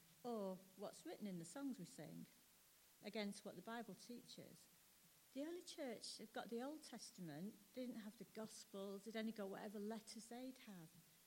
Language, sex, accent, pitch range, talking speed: English, female, British, 180-235 Hz, 170 wpm